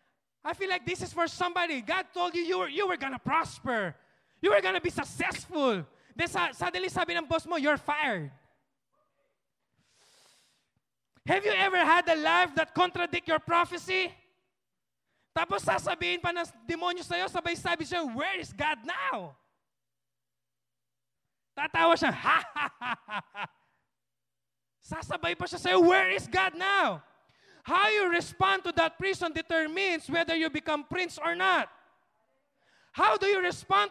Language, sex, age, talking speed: English, male, 20-39, 150 wpm